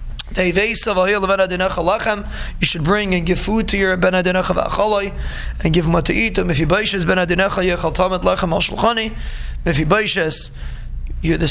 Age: 20-39